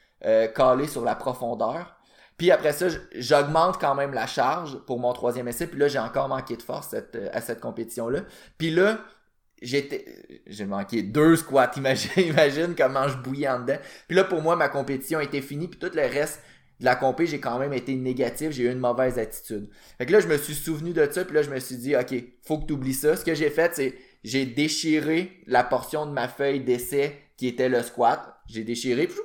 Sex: male